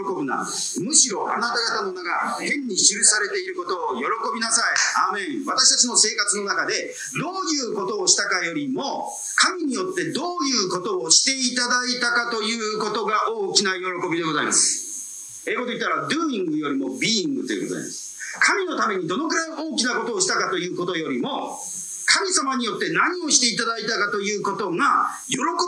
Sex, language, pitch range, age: male, Japanese, 215-330 Hz, 40-59